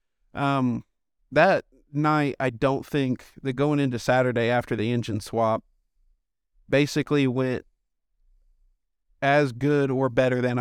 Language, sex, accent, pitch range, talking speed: English, male, American, 120-145 Hz, 120 wpm